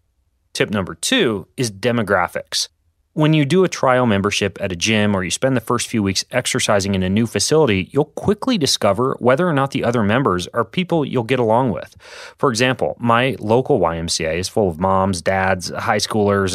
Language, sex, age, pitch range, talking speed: English, male, 30-49, 95-130 Hz, 190 wpm